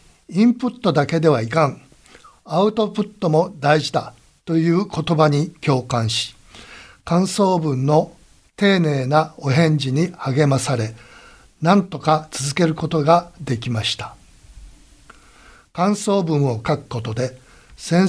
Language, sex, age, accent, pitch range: Japanese, male, 60-79, native, 130-175 Hz